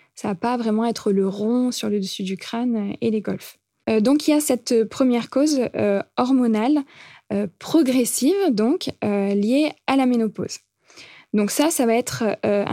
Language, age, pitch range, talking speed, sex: French, 20-39, 210-260 Hz, 190 wpm, female